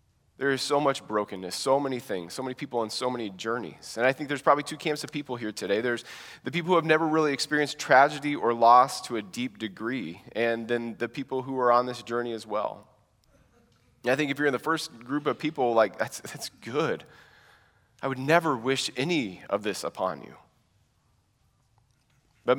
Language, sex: English, male